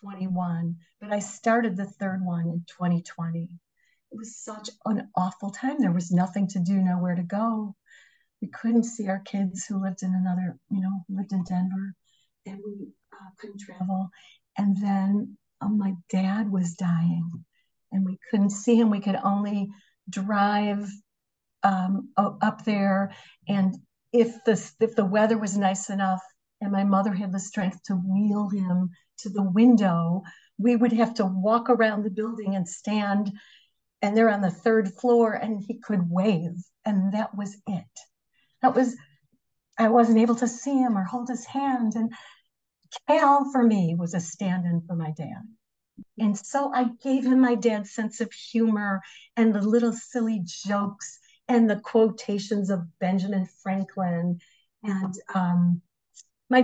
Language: English